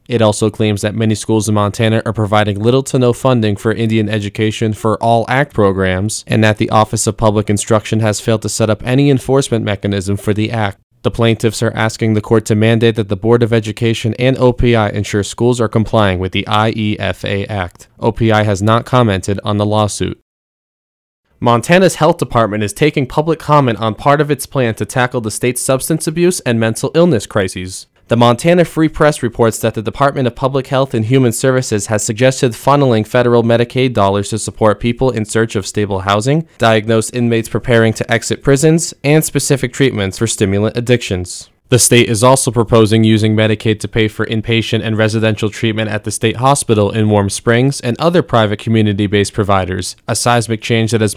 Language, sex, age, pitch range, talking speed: English, male, 20-39, 105-125 Hz, 190 wpm